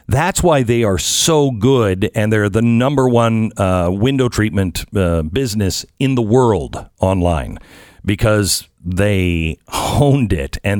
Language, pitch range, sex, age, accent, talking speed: English, 95-125 Hz, male, 50-69, American, 140 wpm